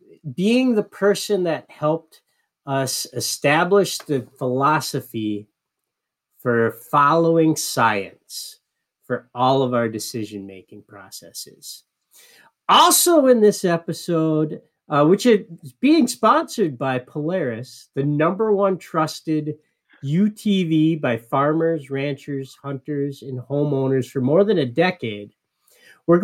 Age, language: 50-69, English